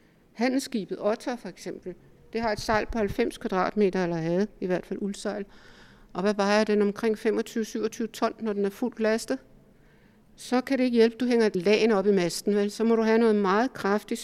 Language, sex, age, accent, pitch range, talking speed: Danish, female, 60-79, native, 195-225 Hz, 205 wpm